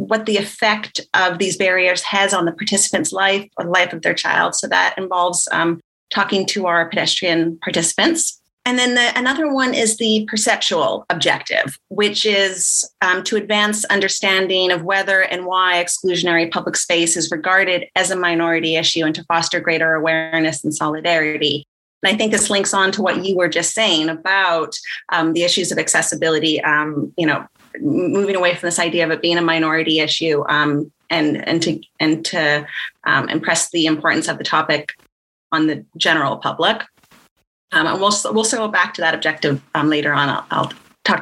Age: 30-49